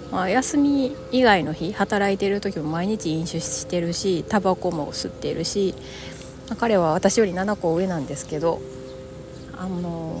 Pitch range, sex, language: 140-185 Hz, female, Japanese